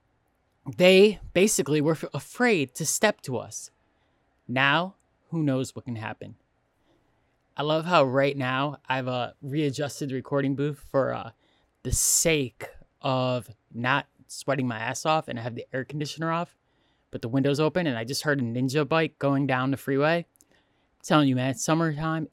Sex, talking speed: male, 165 wpm